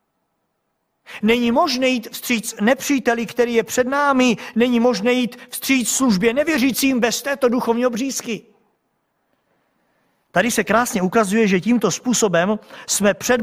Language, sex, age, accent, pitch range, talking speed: Czech, male, 50-69, native, 205-255 Hz, 125 wpm